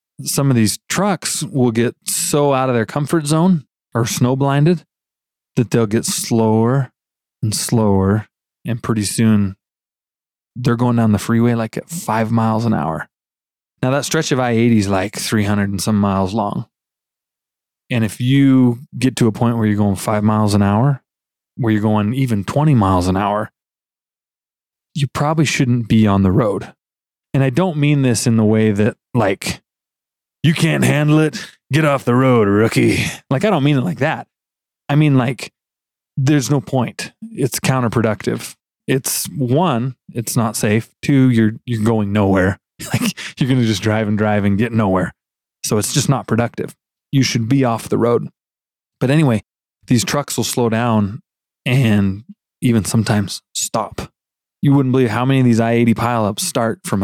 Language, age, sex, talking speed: English, 20-39, male, 175 wpm